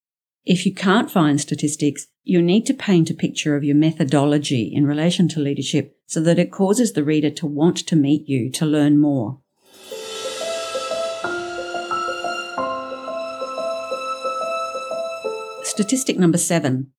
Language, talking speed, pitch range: English, 115 wpm, 145-180 Hz